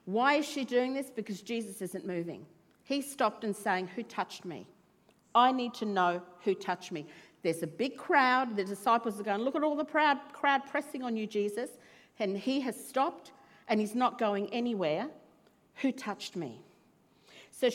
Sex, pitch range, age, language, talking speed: female, 195-265 Hz, 50-69, English, 180 wpm